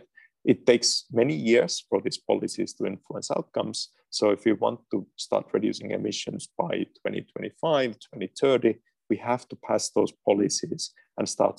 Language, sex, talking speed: English, male, 150 wpm